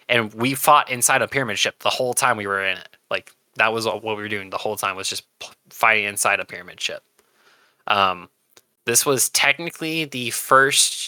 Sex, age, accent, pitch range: male, 20-39, American, 110-135 Hz